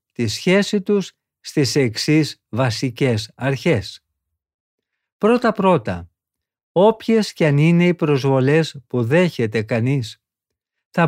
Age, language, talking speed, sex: 50-69, Greek, 105 wpm, male